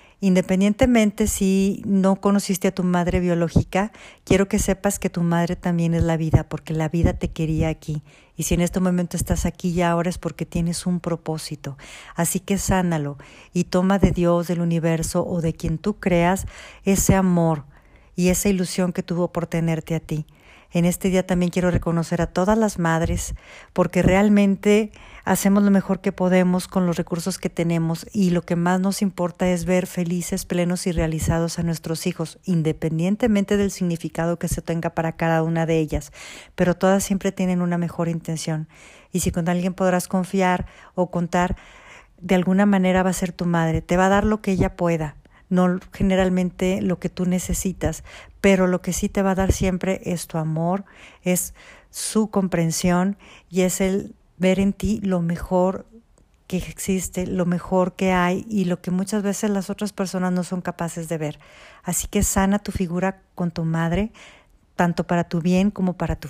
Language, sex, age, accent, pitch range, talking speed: Spanish, female, 50-69, Mexican, 170-190 Hz, 185 wpm